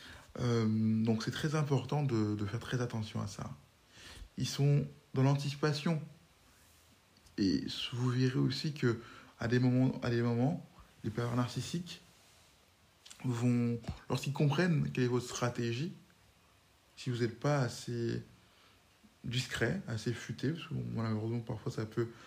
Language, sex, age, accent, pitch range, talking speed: French, male, 20-39, French, 115-140 Hz, 130 wpm